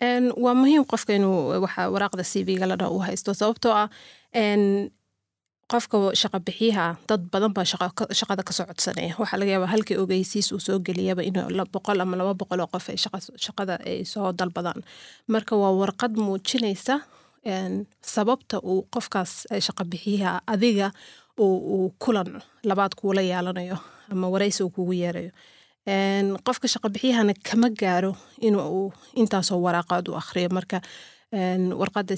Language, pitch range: Swedish, 185-220 Hz